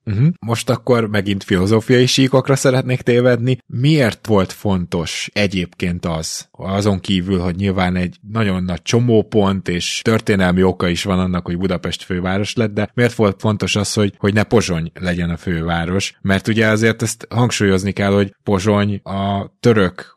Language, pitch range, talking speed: Hungarian, 90-105 Hz, 155 wpm